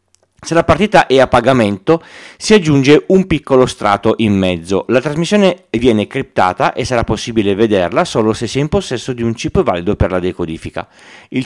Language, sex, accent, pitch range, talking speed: Italian, male, native, 105-145 Hz, 185 wpm